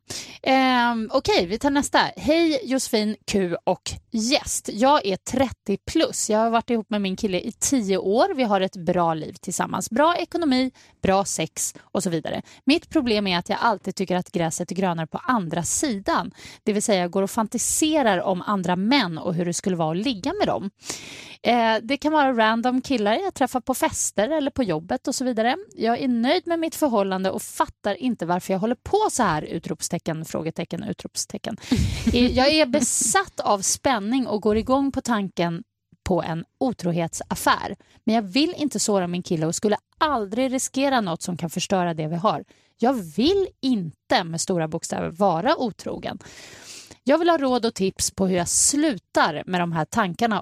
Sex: female